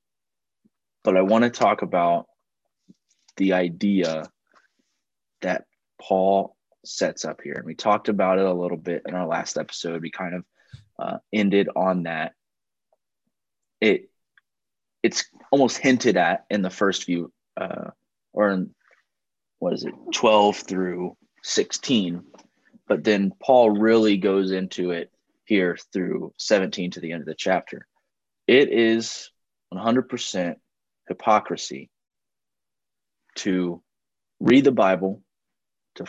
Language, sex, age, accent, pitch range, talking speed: English, male, 20-39, American, 85-100 Hz, 125 wpm